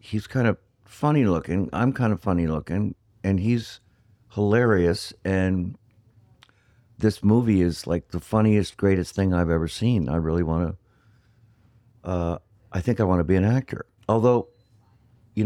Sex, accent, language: male, American, English